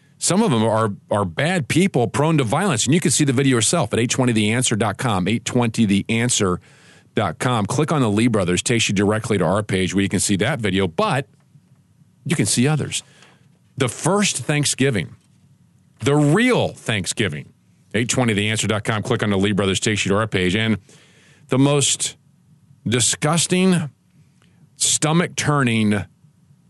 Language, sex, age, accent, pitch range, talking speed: English, male, 40-59, American, 105-150 Hz, 145 wpm